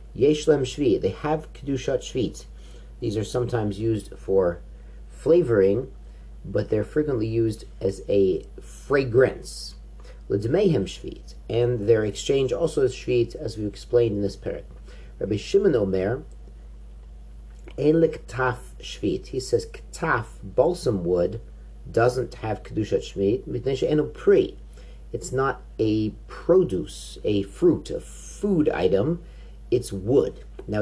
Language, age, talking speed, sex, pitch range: English, 40-59, 115 wpm, male, 95-125 Hz